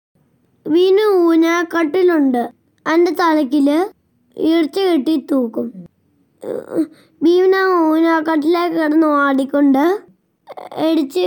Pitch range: 285-340 Hz